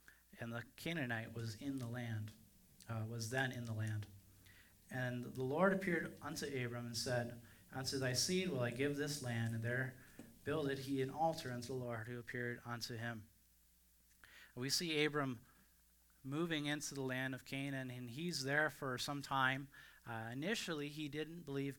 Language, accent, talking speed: English, American, 170 wpm